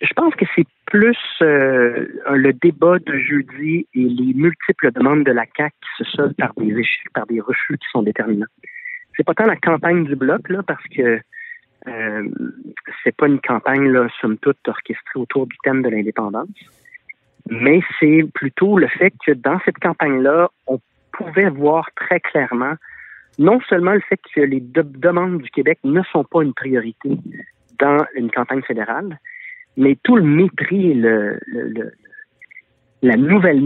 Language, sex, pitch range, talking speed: French, male, 125-175 Hz, 170 wpm